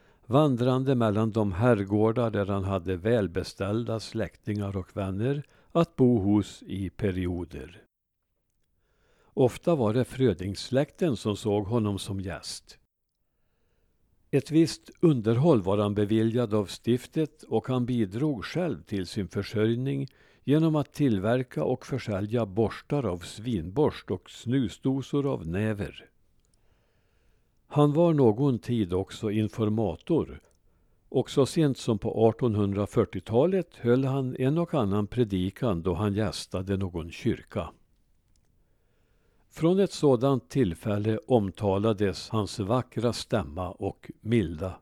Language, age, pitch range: Swedish, 60-79, 100-125 Hz